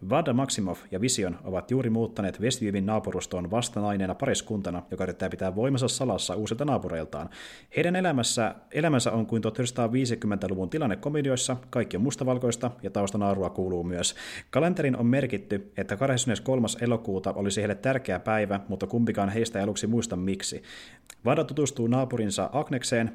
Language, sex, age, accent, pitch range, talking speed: Finnish, male, 30-49, native, 100-125 Hz, 135 wpm